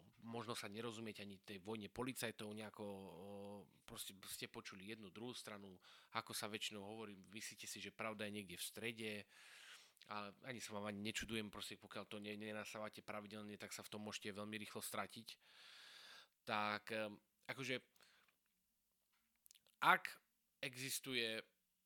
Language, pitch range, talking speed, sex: Slovak, 105-125 Hz, 135 wpm, male